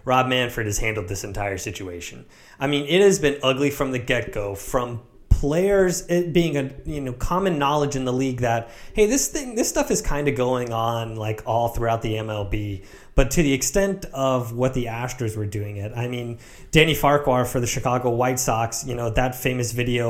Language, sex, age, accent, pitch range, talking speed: English, male, 30-49, American, 115-145 Hz, 205 wpm